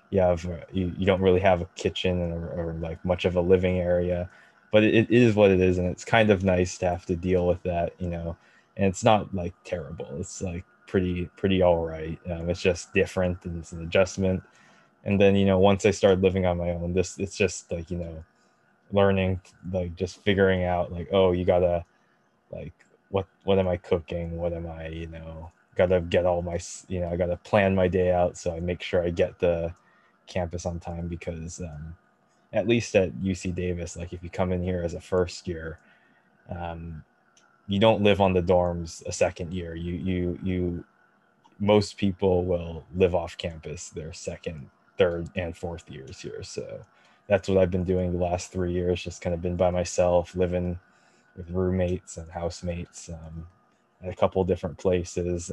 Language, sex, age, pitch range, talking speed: English, male, 20-39, 85-95 Hz, 200 wpm